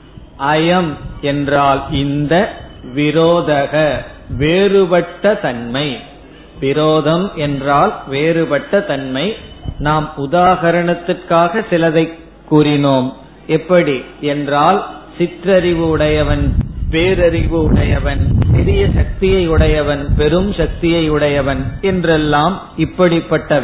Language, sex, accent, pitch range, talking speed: Tamil, male, native, 145-180 Hz, 70 wpm